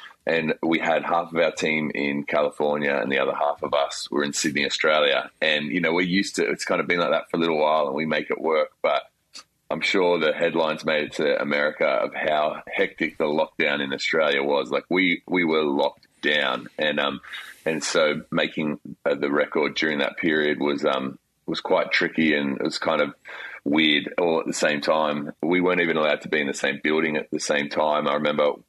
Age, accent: 30-49, Australian